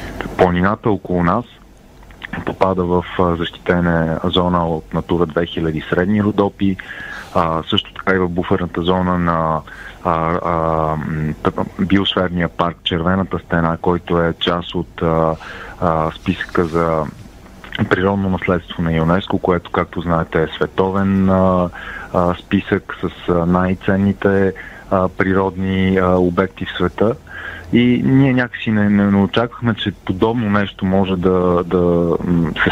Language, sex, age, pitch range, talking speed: Bulgarian, male, 30-49, 85-95 Hz, 110 wpm